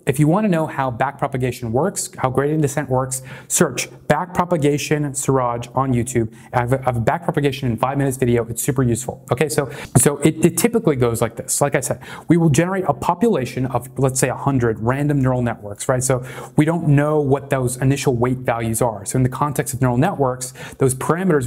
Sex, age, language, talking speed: male, 30-49, English, 205 wpm